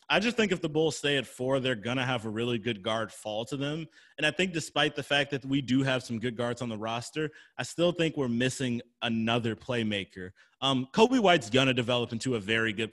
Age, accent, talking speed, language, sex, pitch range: 30-49, American, 245 wpm, English, male, 115-140 Hz